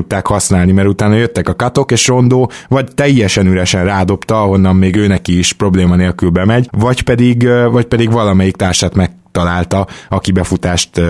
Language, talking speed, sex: Hungarian, 160 wpm, male